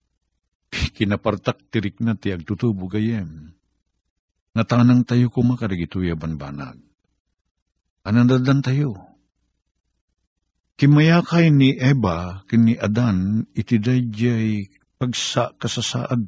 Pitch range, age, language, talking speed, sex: 105-145 Hz, 50-69, Filipino, 75 wpm, male